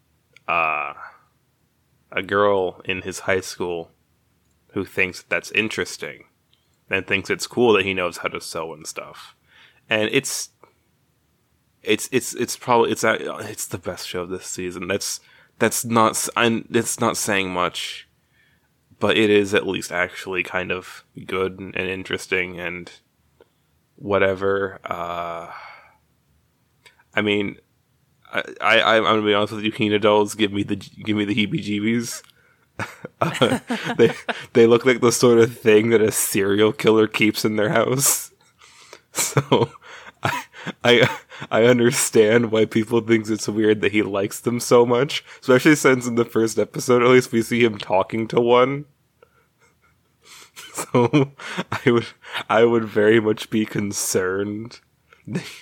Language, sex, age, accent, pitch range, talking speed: English, male, 20-39, American, 100-120 Hz, 145 wpm